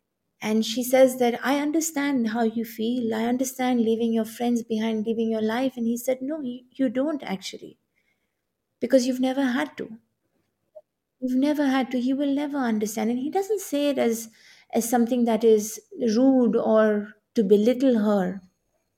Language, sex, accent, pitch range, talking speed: English, female, Indian, 225-270 Hz, 170 wpm